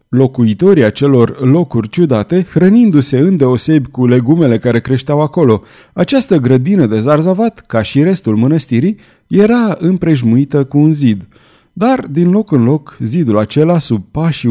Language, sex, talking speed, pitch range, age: Romanian, male, 135 wpm, 120-165 Hz, 30-49